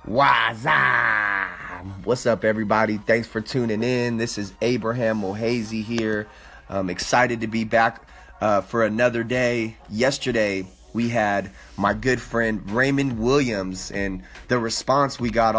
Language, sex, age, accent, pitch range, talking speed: English, male, 20-39, American, 105-130 Hz, 135 wpm